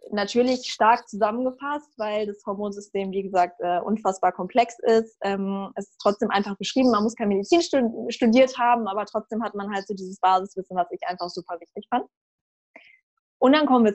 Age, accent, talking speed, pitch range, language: 20-39, German, 170 wpm, 205-240 Hz, German